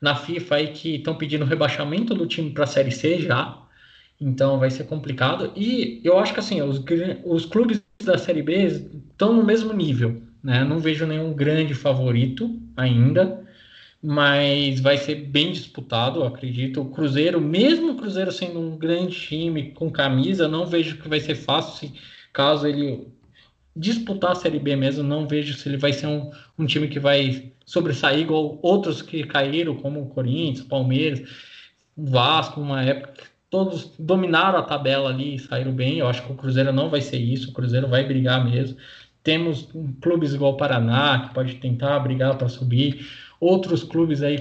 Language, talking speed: Portuguese, 175 wpm